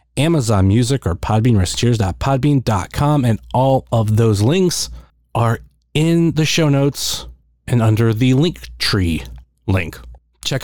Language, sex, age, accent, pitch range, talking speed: English, male, 30-49, American, 95-130 Hz, 120 wpm